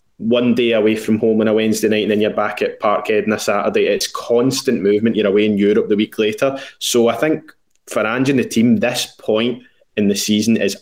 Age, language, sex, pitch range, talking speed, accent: 20-39, English, male, 105-140 Hz, 235 wpm, British